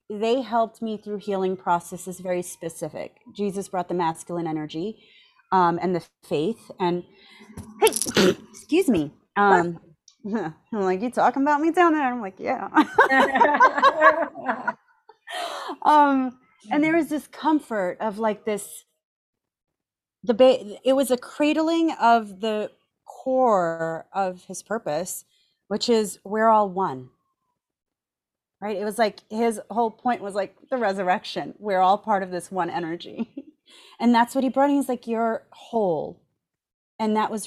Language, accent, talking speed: English, American, 145 wpm